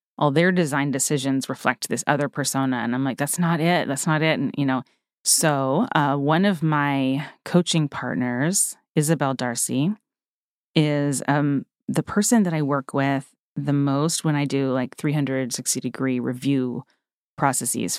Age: 30-49